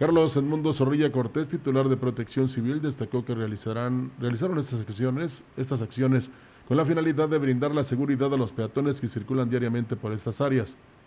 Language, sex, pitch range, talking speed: Spanish, male, 115-140 Hz, 175 wpm